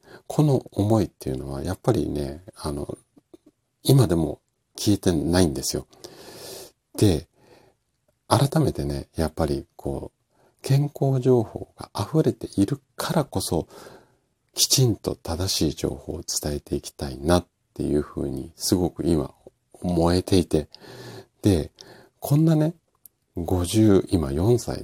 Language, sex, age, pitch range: Japanese, male, 50-69, 75-115 Hz